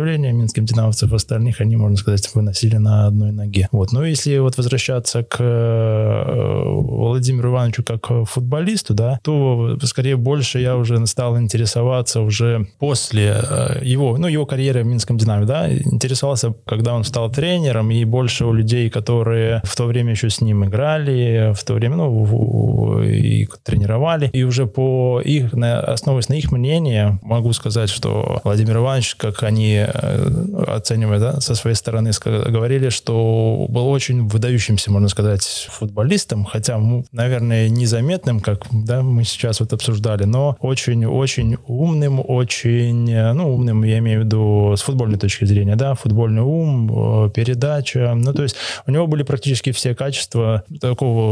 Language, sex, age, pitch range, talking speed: Russian, male, 20-39, 110-130 Hz, 150 wpm